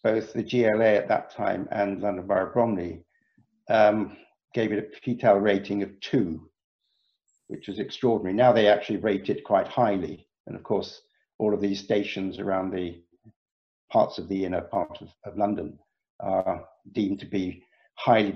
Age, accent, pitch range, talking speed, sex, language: 60-79, British, 100-120 Hz, 165 wpm, male, English